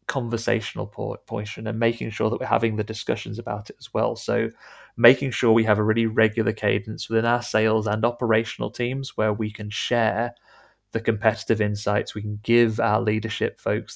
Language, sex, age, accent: English, male, 20-39, British